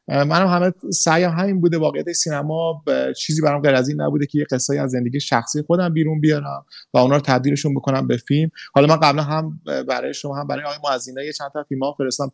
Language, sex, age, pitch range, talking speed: Persian, male, 30-49, 140-175 Hz, 220 wpm